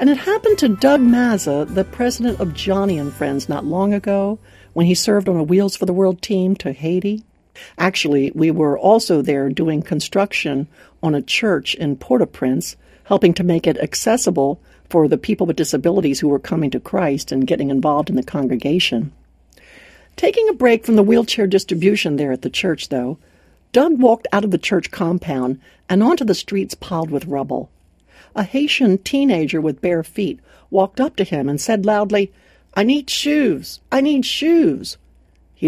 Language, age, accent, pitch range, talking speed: English, 60-79, American, 155-240 Hz, 180 wpm